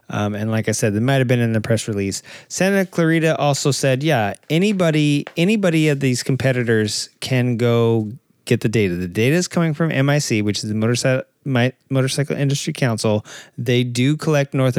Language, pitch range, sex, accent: English, 115-145 Hz, male, American